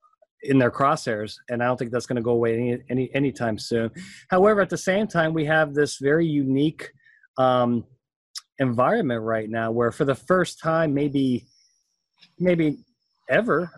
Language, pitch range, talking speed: English, 120-150 Hz, 165 wpm